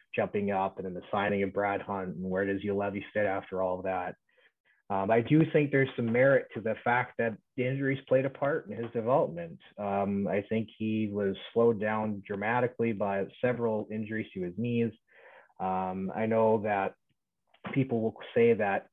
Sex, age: male, 30-49